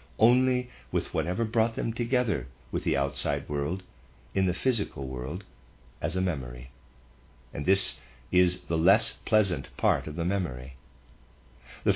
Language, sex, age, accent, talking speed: English, male, 50-69, American, 140 wpm